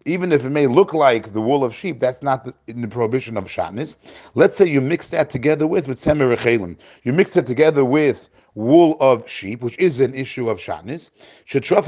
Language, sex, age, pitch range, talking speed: English, male, 40-59, 125-165 Hz, 210 wpm